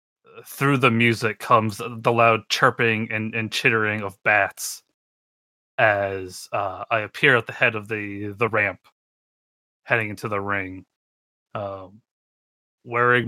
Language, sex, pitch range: English, male, 100-115 Hz